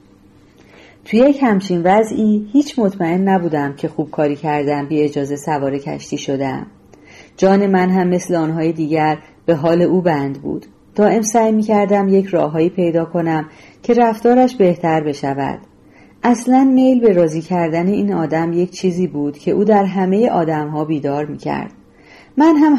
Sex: female